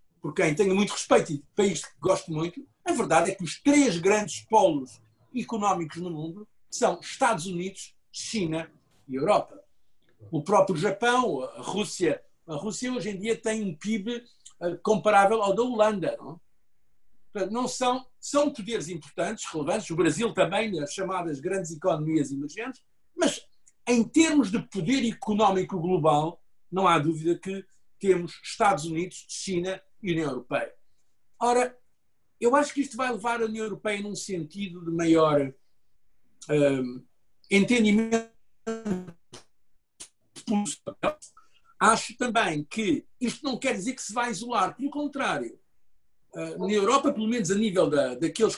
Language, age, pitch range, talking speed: Portuguese, 50-69, 175-240 Hz, 140 wpm